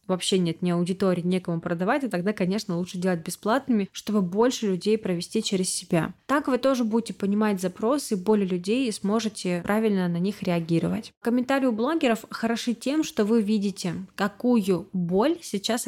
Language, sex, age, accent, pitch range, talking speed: Russian, female, 20-39, native, 190-235 Hz, 165 wpm